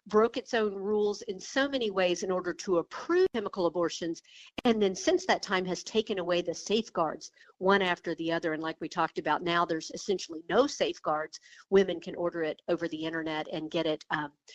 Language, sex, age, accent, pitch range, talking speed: English, female, 50-69, American, 175-235 Hz, 200 wpm